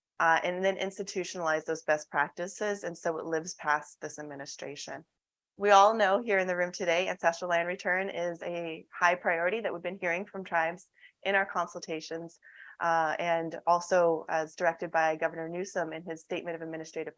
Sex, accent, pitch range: female, American, 160-185 Hz